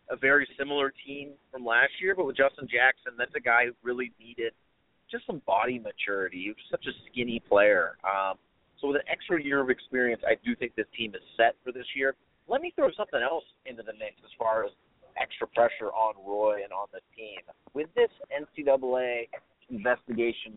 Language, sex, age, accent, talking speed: English, male, 30-49, American, 200 wpm